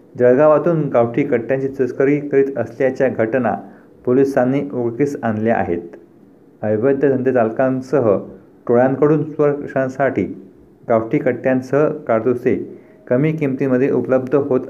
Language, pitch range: Marathi, 115-140 Hz